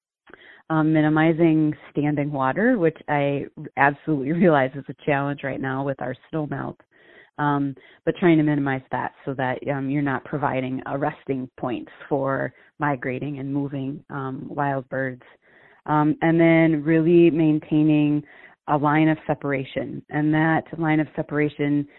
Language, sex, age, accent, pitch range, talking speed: English, female, 30-49, American, 140-155 Hz, 140 wpm